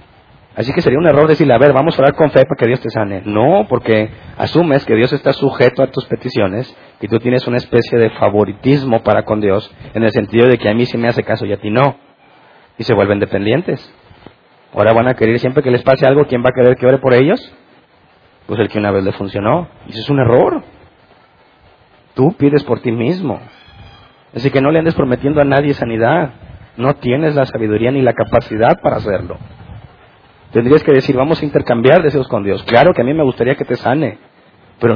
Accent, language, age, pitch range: Mexican, Spanish, 40-59, 115-140 Hz